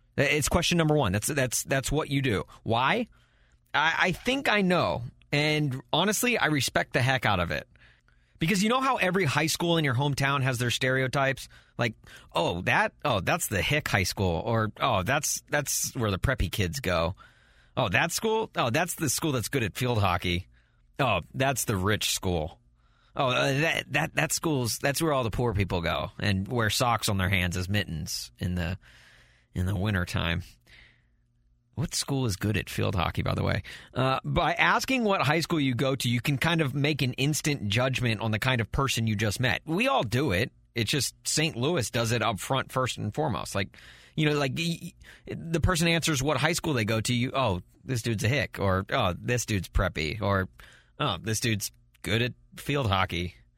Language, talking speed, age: English, 205 wpm, 30-49